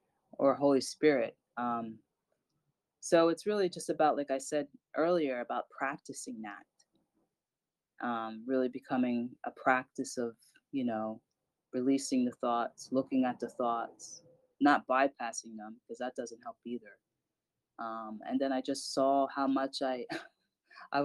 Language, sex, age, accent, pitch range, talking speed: English, female, 20-39, American, 130-185 Hz, 140 wpm